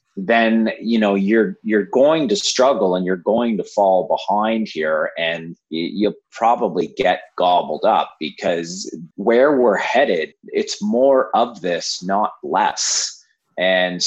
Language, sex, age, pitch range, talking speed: English, male, 30-49, 105-155 Hz, 135 wpm